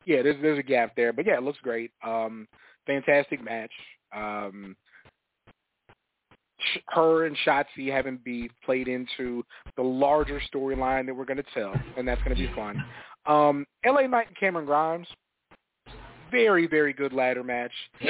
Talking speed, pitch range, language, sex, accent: 155 wpm, 130-165 Hz, English, male, American